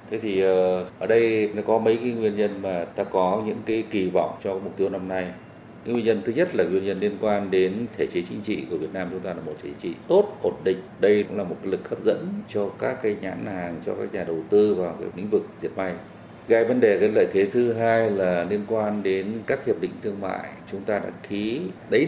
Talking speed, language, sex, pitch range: 255 wpm, Vietnamese, male, 95-110 Hz